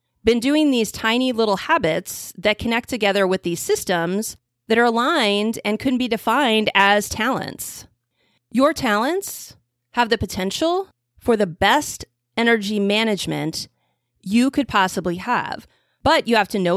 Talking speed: 145 wpm